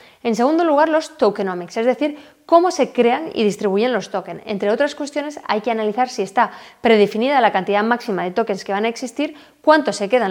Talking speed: 205 wpm